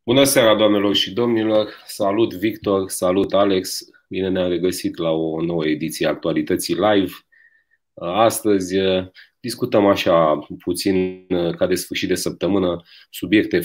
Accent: native